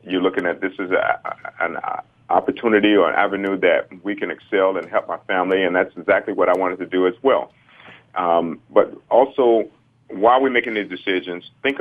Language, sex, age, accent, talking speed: English, male, 40-59, American, 195 wpm